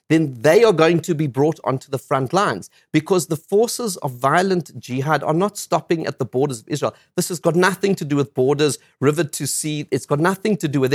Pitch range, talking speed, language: 135-175 Hz, 230 wpm, English